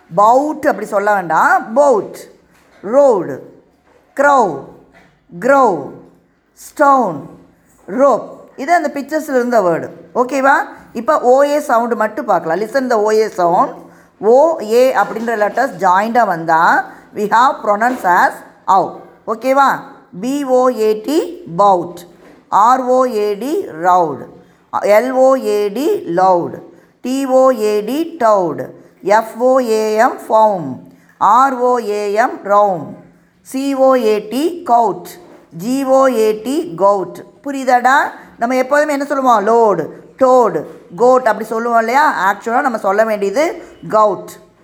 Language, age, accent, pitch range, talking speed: Tamil, 20-39, native, 205-275 Hz, 75 wpm